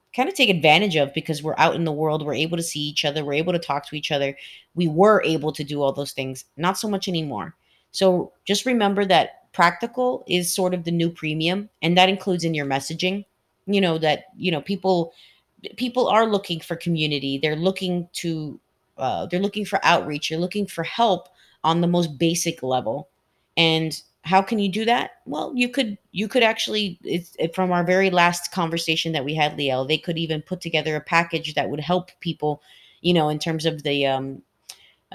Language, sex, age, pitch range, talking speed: English, female, 30-49, 150-185 Hz, 210 wpm